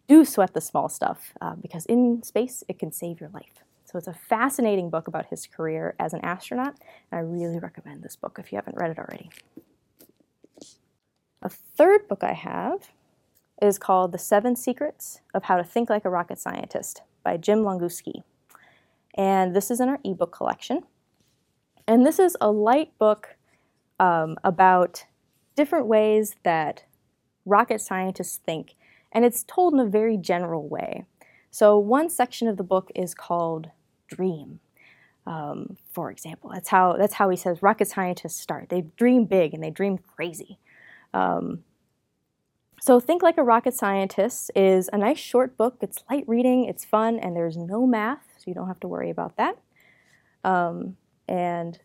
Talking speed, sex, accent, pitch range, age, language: 170 wpm, female, American, 180-235 Hz, 20-39, English